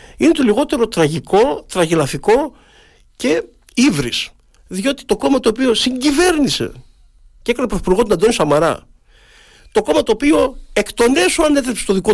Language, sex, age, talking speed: Greek, male, 50-69, 145 wpm